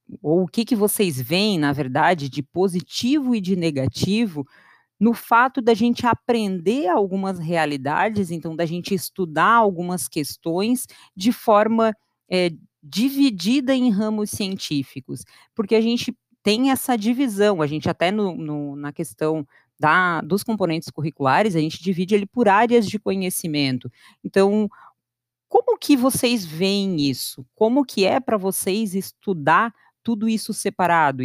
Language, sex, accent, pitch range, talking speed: Portuguese, female, Brazilian, 155-225 Hz, 135 wpm